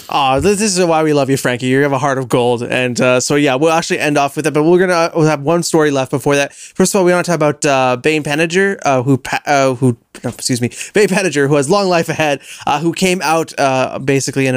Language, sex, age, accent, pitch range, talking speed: English, male, 20-39, American, 125-160 Hz, 270 wpm